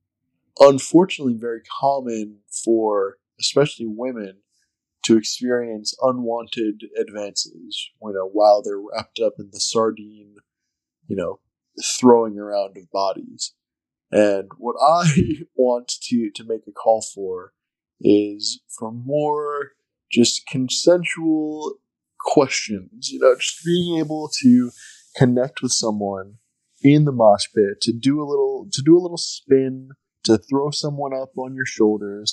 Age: 20-39